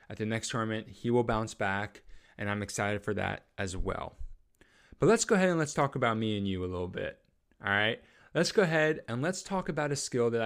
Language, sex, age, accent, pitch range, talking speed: English, male, 20-39, American, 110-145 Hz, 235 wpm